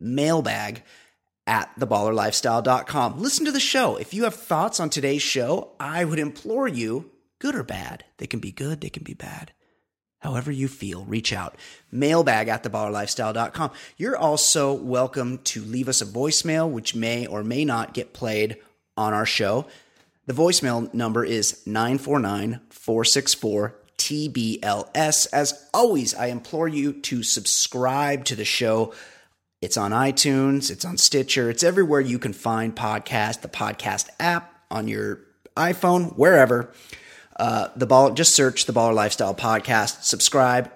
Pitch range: 110-145 Hz